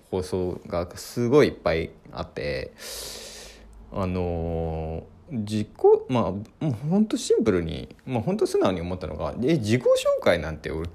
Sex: male